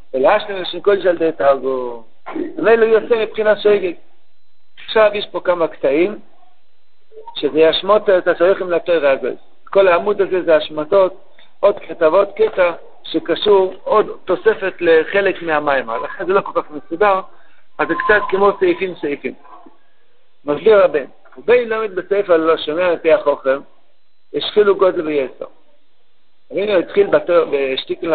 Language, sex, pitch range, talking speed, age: Hebrew, male, 170-225 Hz, 130 wpm, 60-79